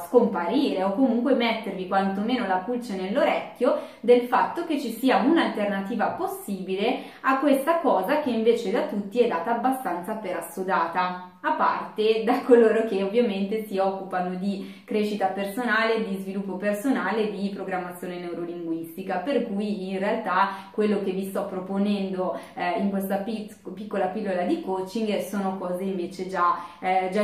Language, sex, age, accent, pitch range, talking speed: Italian, female, 20-39, native, 190-235 Hz, 140 wpm